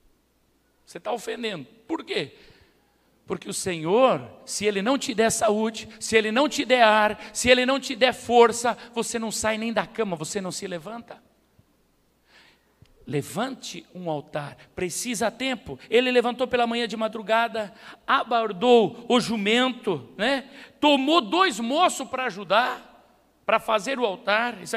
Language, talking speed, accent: Portuguese, 150 wpm, Brazilian